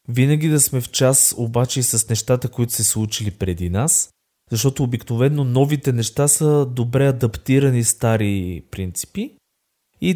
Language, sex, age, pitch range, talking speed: Bulgarian, male, 20-39, 105-130 Hz, 140 wpm